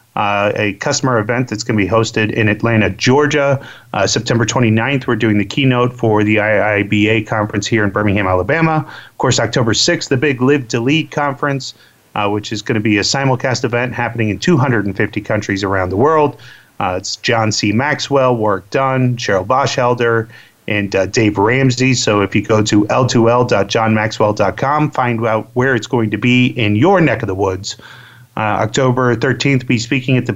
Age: 30-49